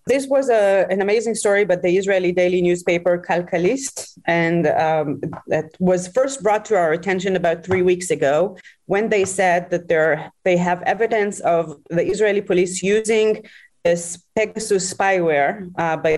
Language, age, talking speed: English, 30-49, 160 wpm